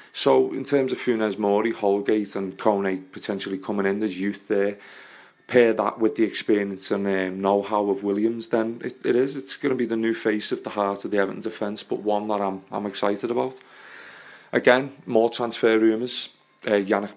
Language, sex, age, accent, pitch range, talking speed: English, male, 30-49, British, 95-110 Hz, 195 wpm